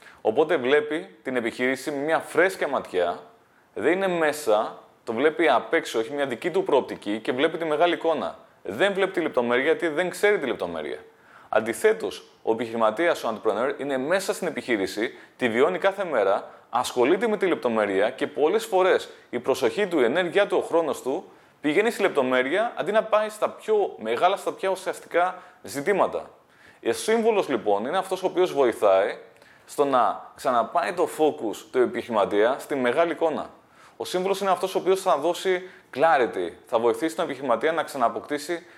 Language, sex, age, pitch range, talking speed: Greek, male, 20-39, 135-190 Hz, 170 wpm